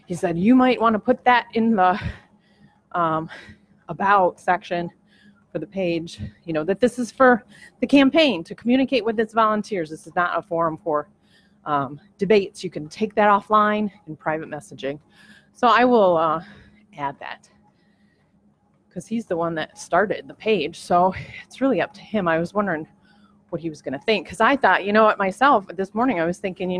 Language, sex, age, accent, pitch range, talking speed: English, female, 30-49, American, 175-220 Hz, 195 wpm